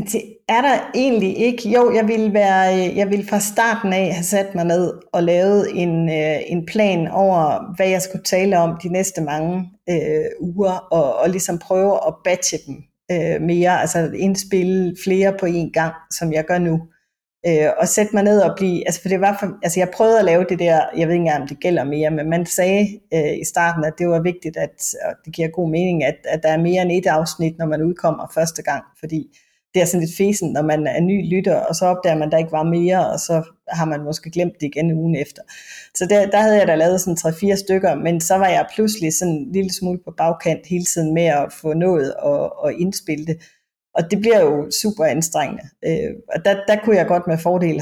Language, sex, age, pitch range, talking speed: Danish, female, 30-49, 160-195 Hz, 230 wpm